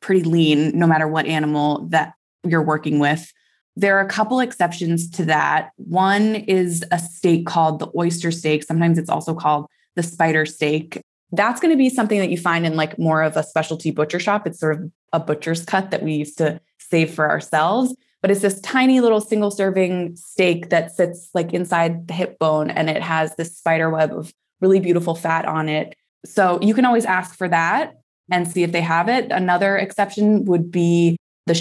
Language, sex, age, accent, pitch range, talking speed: English, female, 20-39, American, 160-195 Hz, 200 wpm